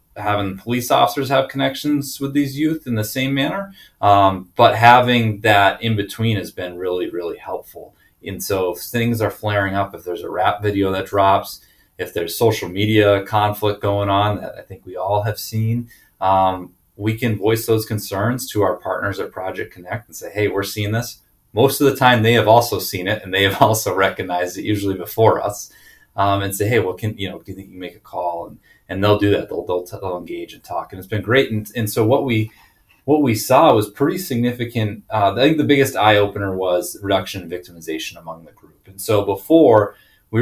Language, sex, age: English, male, 30-49